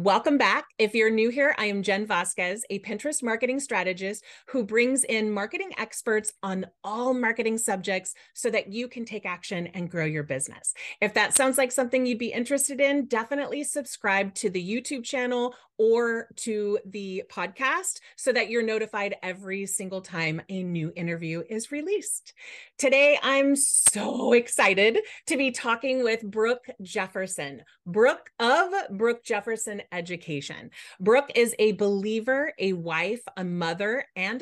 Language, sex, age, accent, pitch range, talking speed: English, female, 30-49, American, 195-265 Hz, 155 wpm